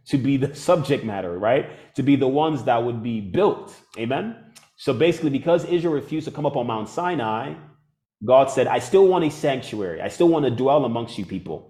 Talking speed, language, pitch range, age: 210 wpm, English, 120-155 Hz, 30-49